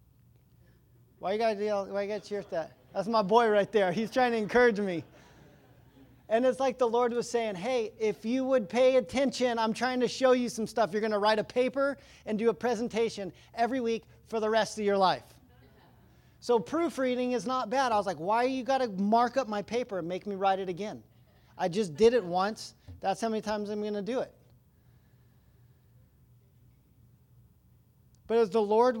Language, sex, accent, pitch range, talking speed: English, male, American, 170-235 Hz, 195 wpm